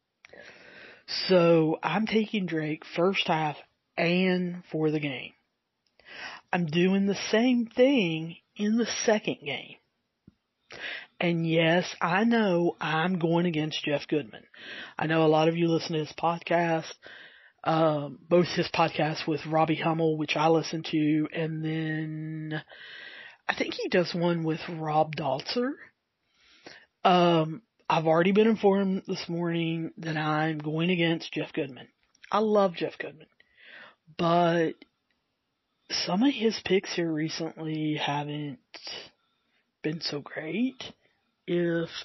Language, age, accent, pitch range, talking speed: English, 40-59, American, 155-180 Hz, 125 wpm